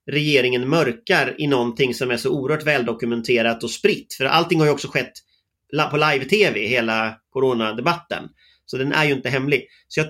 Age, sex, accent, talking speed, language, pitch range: 30-49, male, native, 170 wpm, Swedish, 125-175 Hz